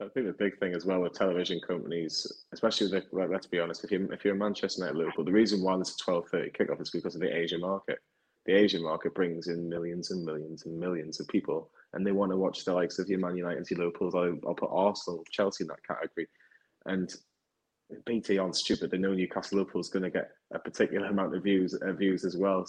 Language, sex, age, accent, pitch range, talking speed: English, male, 20-39, British, 90-100 Hz, 240 wpm